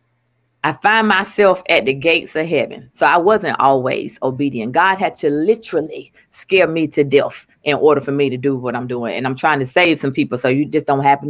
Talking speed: 225 wpm